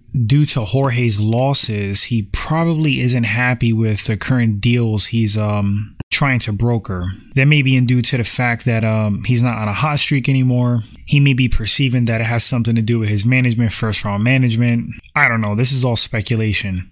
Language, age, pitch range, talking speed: English, 20-39, 110-130 Hz, 195 wpm